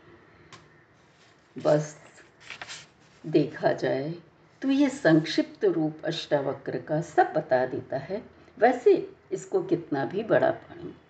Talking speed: 105 wpm